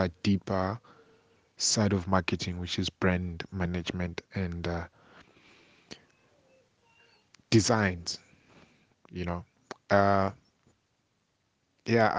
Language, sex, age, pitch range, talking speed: English, male, 20-39, 90-100 Hz, 80 wpm